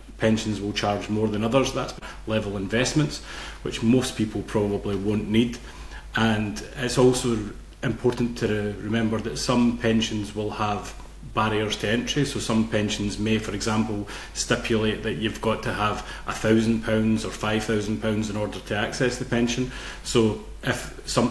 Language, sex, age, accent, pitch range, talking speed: English, male, 30-49, British, 105-115 Hz, 160 wpm